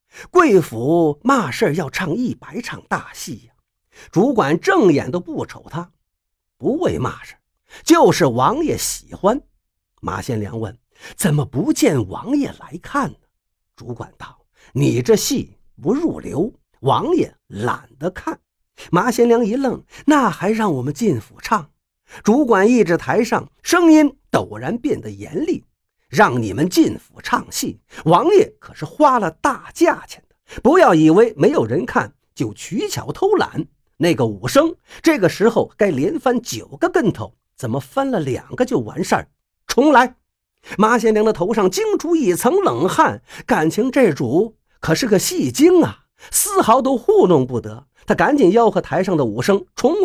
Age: 50-69